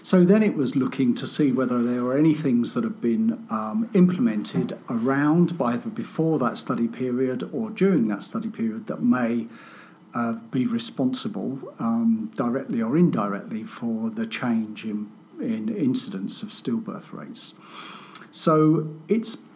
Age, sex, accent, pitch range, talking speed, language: 50-69, male, British, 140-230 Hz, 150 wpm, English